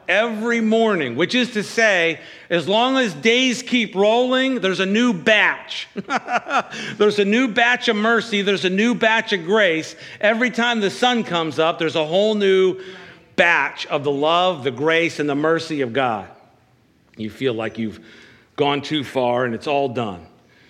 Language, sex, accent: English, male, American